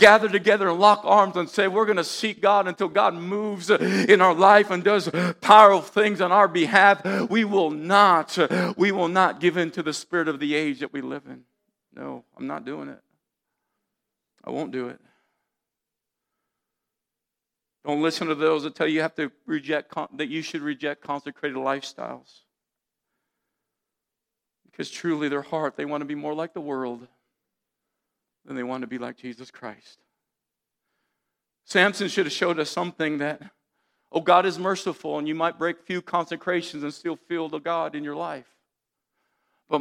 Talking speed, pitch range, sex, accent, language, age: 170 wpm, 150-185 Hz, male, American, English, 50-69